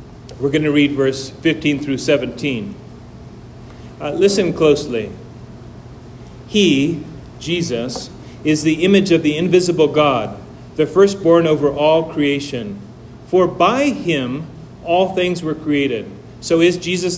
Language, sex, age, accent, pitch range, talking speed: English, male, 40-59, American, 145-175 Hz, 120 wpm